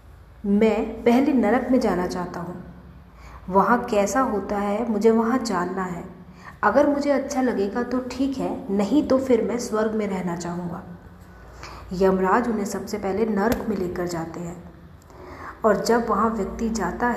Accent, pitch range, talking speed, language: native, 185-240 Hz, 155 wpm, Hindi